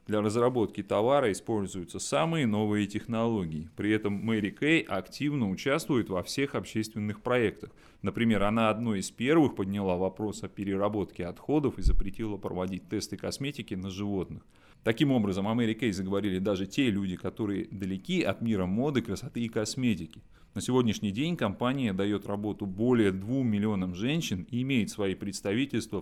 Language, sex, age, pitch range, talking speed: Russian, male, 30-49, 100-125 Hz, 150 wpm